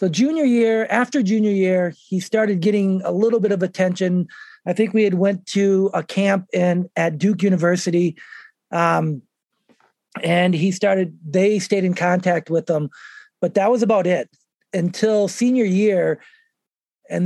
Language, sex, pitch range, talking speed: English, male, 175-225 Hz, 155 wpm